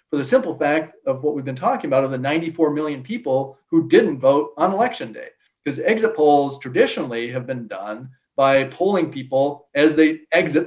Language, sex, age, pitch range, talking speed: English, male, 40-59, 135-165 Hz, 190 wpm